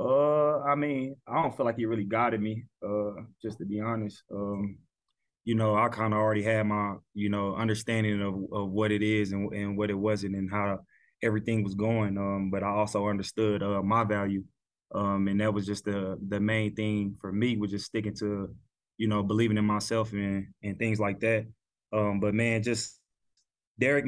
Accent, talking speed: American, 200 wpm